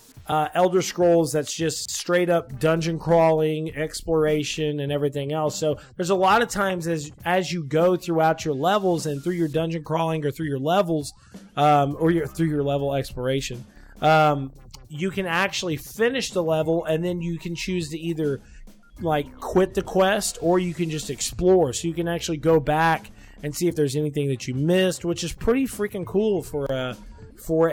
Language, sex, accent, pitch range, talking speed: English, male, American, 145-175 Hz, 185 wpm